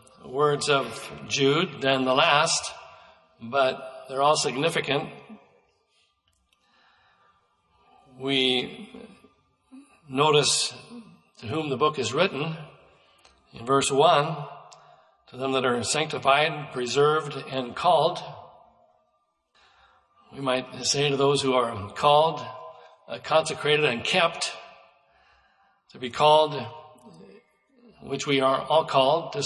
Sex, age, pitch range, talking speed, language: male, 60-79, 135-155 Hz, 100 wpm, English